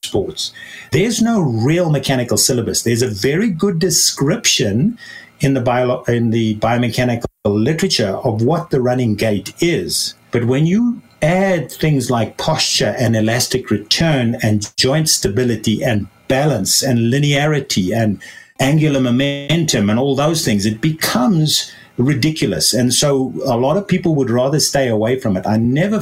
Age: 50-69